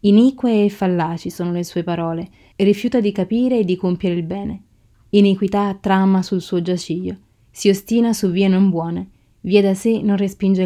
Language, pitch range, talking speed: Italian, 175-205 Hz, 180 wpm